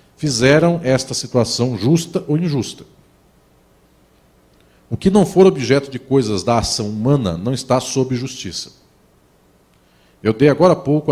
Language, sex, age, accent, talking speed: Portuguese, male, 40-59, Brazilian, 135 wpm